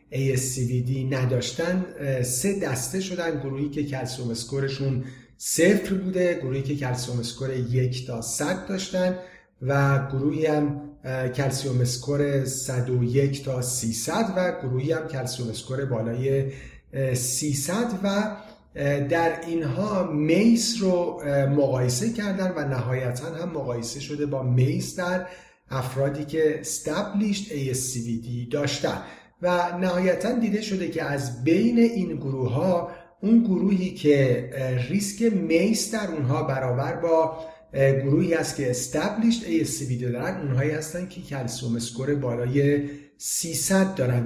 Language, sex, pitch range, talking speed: Persian, male, 130-175 Hz, 115 wpm